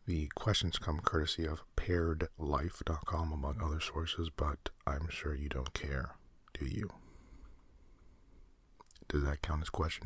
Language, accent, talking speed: English, American, 130 wpm